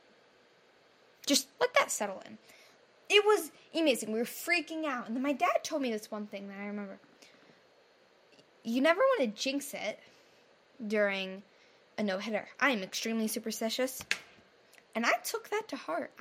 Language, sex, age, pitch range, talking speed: English, female, 10-29, 230-330 Hz, 160 wpm